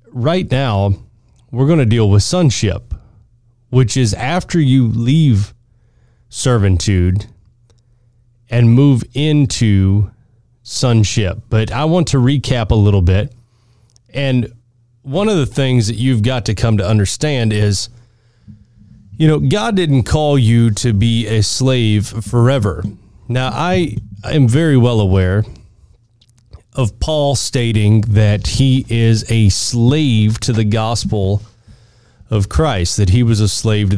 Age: 30-49